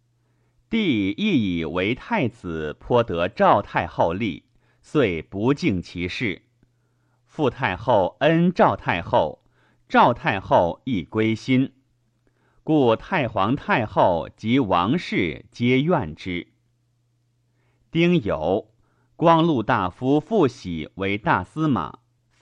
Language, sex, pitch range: Chinese, male, 110-135 Hz